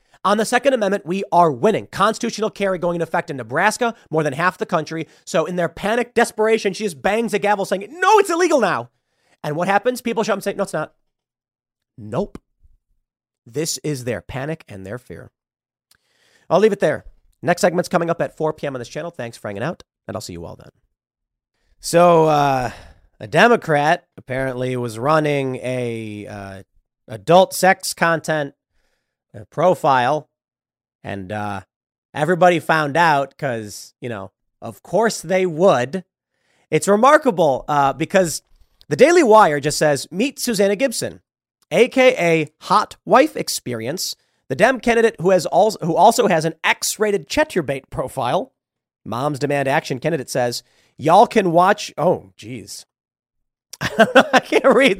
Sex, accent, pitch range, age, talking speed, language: male, American, 130-200 Hz, 30-49, 160 wpm, English